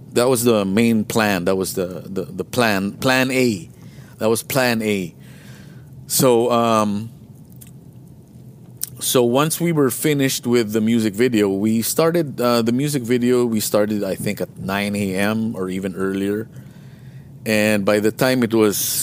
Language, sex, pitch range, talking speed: English, male, 105-130 Hz, 160 wpm